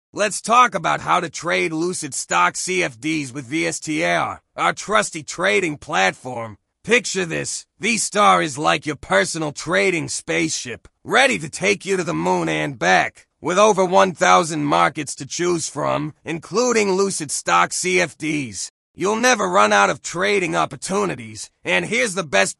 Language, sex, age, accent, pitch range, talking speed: English, male, 30-49, American, 150-195 Hz, 145 wpm